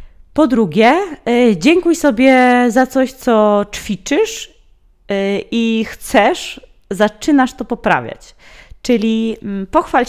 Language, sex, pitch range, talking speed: Polish, female, 185-260 Hz, 90 wpm